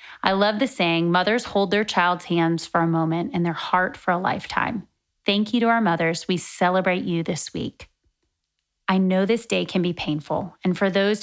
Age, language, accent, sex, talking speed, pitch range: 30-49, English, American, female, 205 wpm, 170-205 Hz